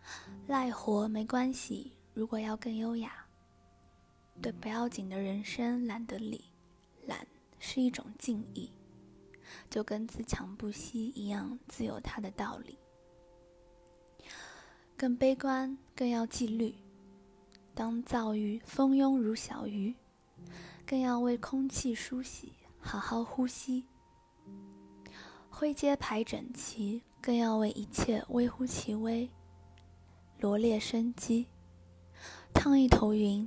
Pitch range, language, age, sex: 175-245 Hz, Chinese, 20-39, female